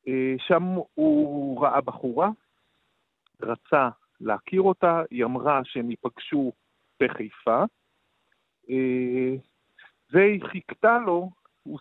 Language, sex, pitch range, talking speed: Hebrew, male, 130-175 Hz, 80 wpm